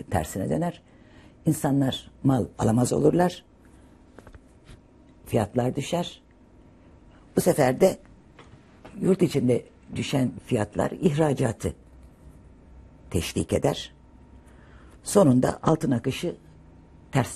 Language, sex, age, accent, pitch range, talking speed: Turkish, female, 60-79, native, 95-155 Hz, 75 wpm